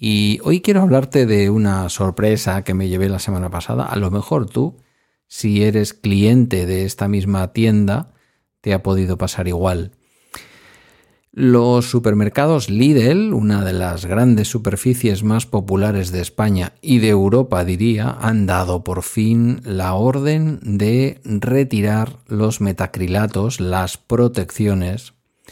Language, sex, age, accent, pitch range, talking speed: Spanish, male, 50-69, Spanish, 95-120 Hz, 135 wpm